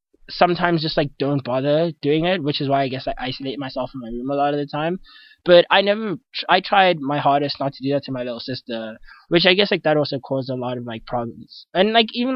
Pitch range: 130-165 Hz